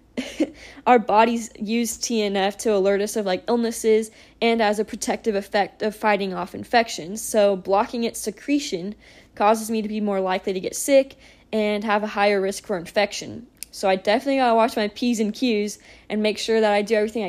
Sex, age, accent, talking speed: female, 10-29, American, 190 wpm